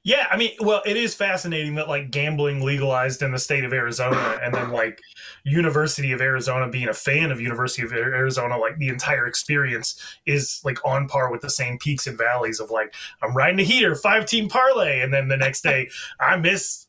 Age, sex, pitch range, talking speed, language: 20-39, male, 140-205 Hz, 210 wpm, English